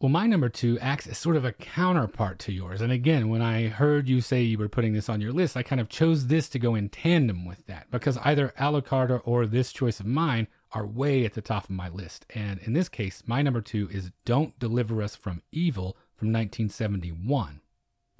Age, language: 30-49, English